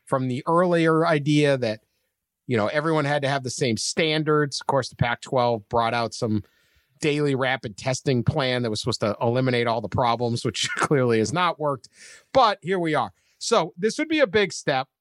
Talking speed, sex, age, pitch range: 195 wpm, male, 40-59, 125-155 Hz